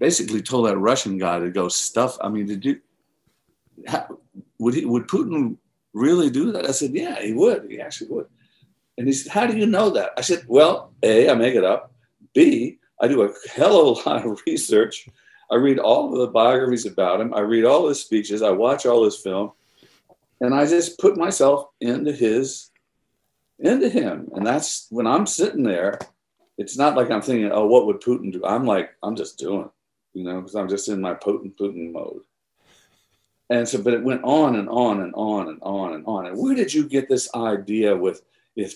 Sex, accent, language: male, American, English